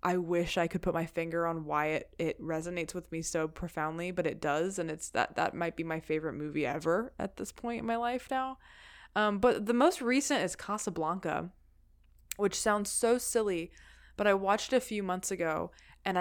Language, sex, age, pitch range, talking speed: English, female, 20-39, 160-205 Hz, 205 wpm